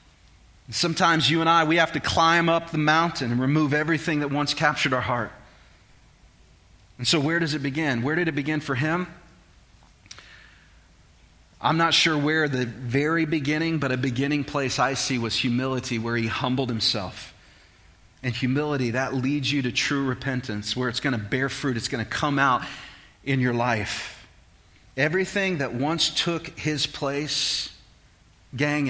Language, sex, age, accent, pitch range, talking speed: English, male, 30-49, American, 120-155 Hz, 160 wpm